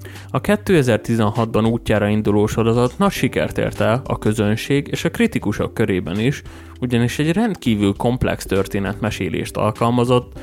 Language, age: Hungarian, 20-39